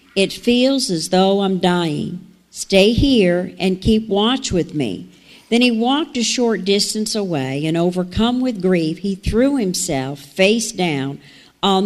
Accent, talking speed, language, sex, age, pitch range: American, 150 wpm, English, female, 50-69, 175-215 Hz